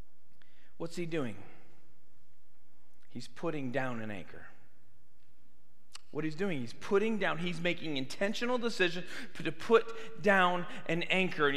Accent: American